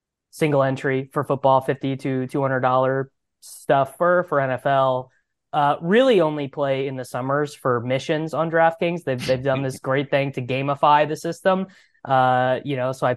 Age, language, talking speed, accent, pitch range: 20-39, English, 180 wpm, American, 130-155 Hz